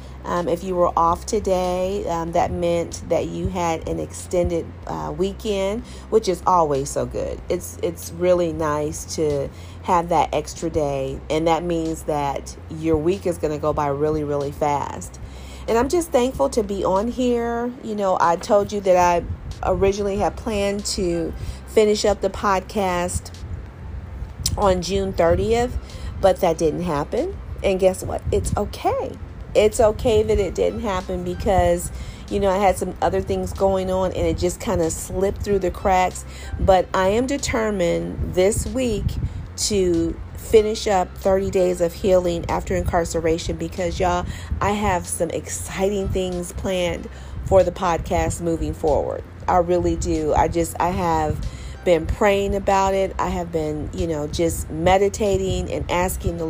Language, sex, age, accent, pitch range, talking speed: English, female, 40-59, American, 155-195 Hz, 160 wpm